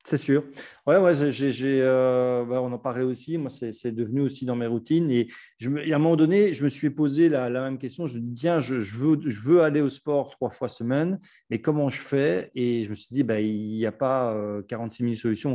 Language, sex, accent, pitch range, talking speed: French, male, French, 115-150 Hz, 265 wpm